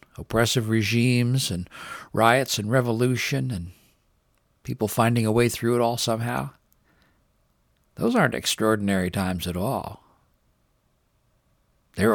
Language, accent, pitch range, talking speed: English, American, 95-120 Hz, 110 wpm